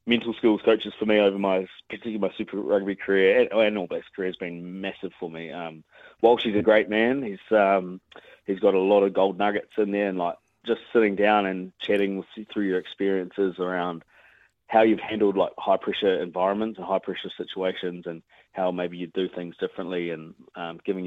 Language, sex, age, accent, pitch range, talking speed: English, male, 30-49, Australian, 90-100 Hz, 210 wpm